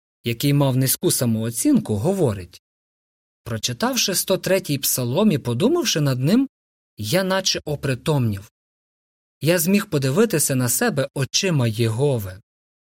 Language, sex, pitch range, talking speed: Ukrainian, male, 115-170 Hz, 100 wpm